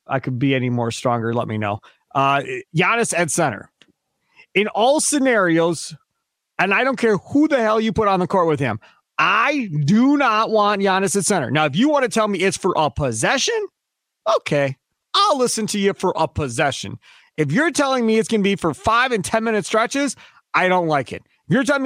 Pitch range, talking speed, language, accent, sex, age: 150-220 Hz, 210 wpm, English, American, male, 30-49